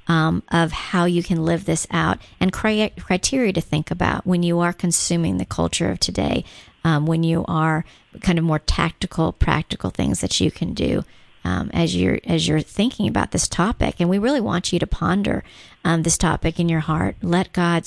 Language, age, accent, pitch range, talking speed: English, 40-59, American, 160-180 Hz, 200 wpm